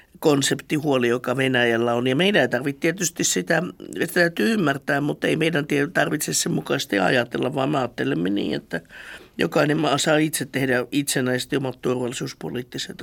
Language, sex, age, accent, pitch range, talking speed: Finnish, male, 60-79, native, 130-155 Hz, 140 wpm